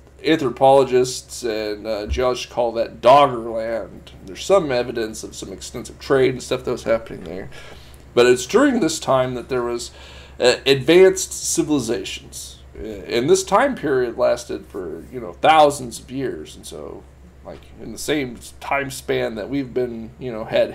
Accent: American